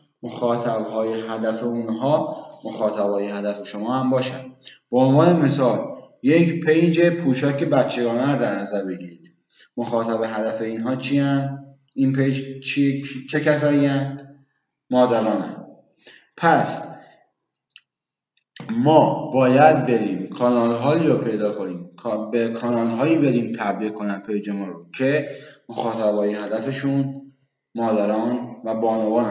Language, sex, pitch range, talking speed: Persian, male, 120-155 Hz, 120 wpm